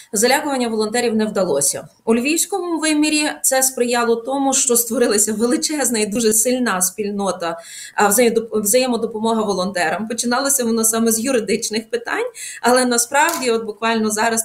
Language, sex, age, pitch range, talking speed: Ukrainian, female, 20-39, 220-270 Hz, 125 wpm